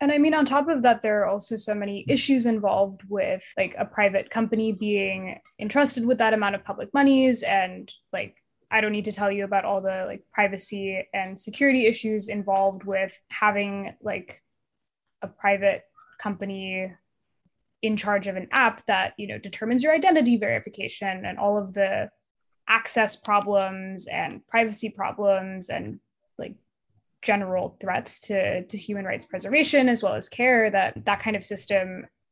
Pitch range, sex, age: 195-230 Hz, female, 10-29